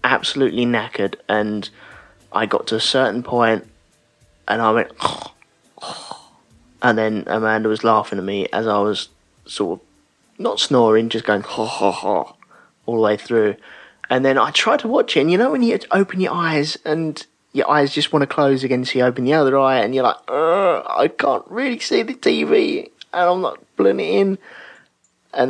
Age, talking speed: 20-39, 180 wpm